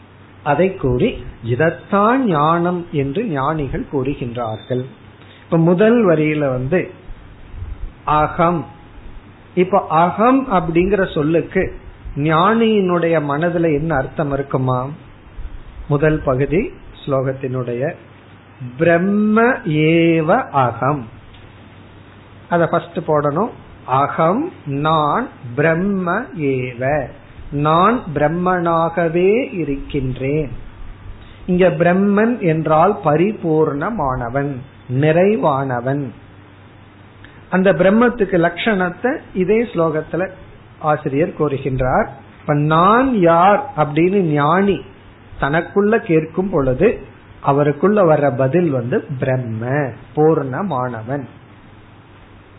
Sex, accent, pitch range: male, native, 120-175 Hz